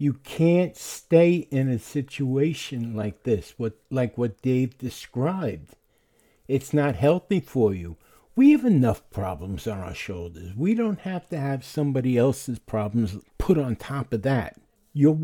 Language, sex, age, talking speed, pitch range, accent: English, male, 60-79, 155 wpm, 115-155 Hz, American